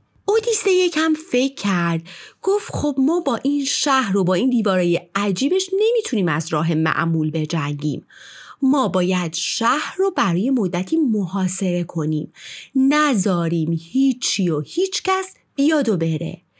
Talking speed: 125 wpm